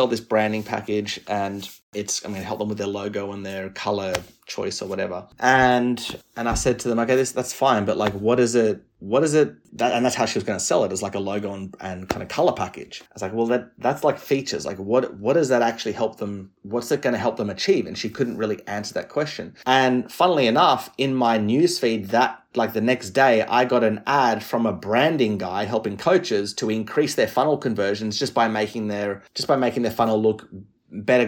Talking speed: 240 wpm